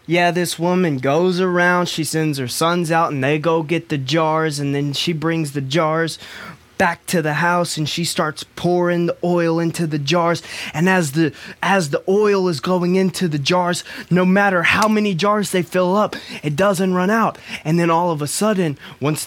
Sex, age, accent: male, 20-39, American